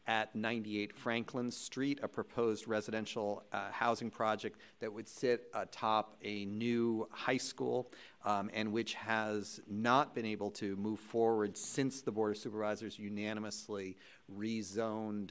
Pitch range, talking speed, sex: 100-115 Hz, 135 wpm, male